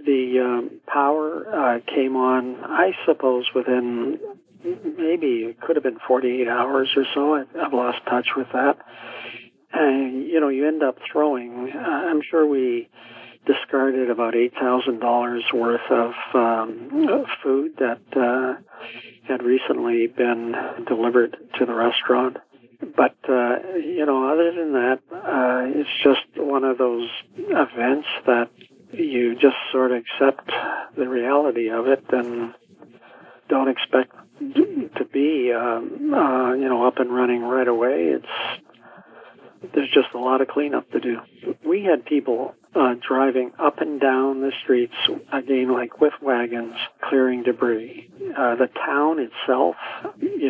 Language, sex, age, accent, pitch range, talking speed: English, male, 50-69, American, 125-150 Hz, 140 wpm